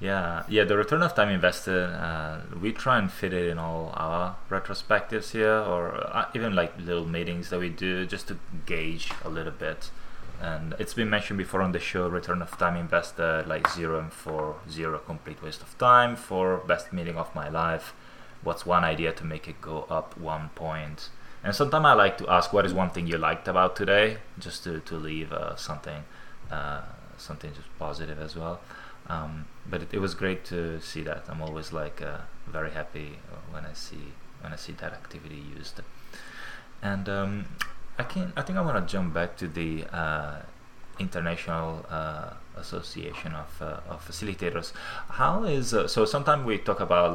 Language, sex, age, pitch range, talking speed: English, male, 20-39, 80-100 Hz, 185 wpm